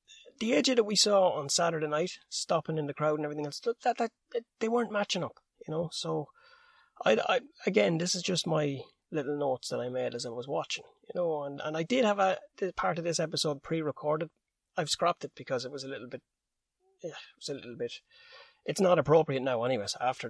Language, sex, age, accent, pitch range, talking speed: English, male, 30-49, Irish, 140-210 Hz, 225 wpm